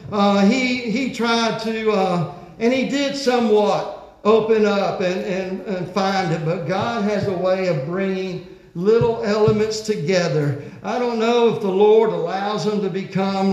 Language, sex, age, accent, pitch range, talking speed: English, male, 60-79, American, 190-230 Hz, 165 wpm